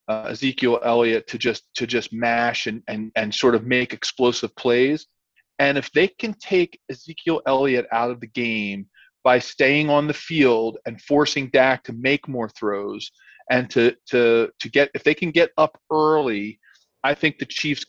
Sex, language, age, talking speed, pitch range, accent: male, English, 40-59, 180 wpm, 120-150 Hz, American